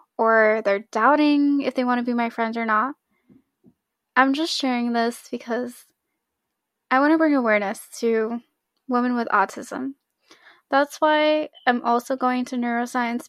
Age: 10-29